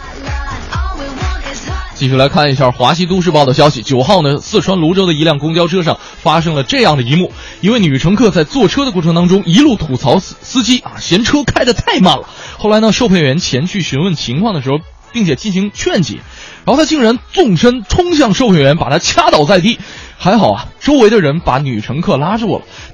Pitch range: 130-205 Hz